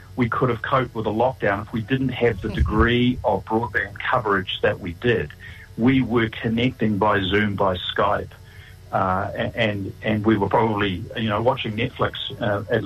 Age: 40-59